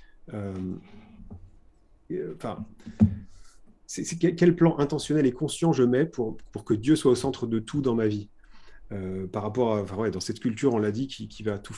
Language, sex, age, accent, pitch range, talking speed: French, male, 30-49, French, 105-135 Hz, 195 wpm